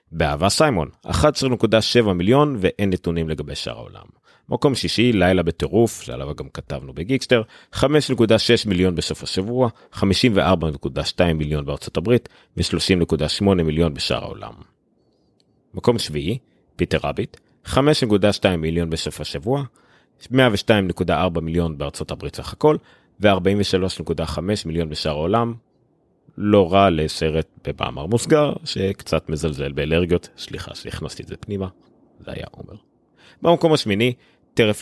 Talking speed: 115 wpm